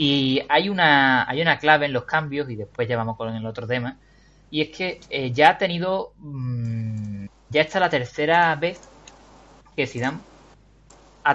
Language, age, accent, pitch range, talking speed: Spanish, 20-39, Spanish, 120-150 Hz, 175 wpm